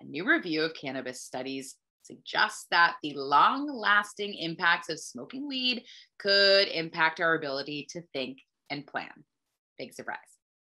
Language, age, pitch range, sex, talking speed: English, 20-39, 150-210 Hz, female, 135 wpm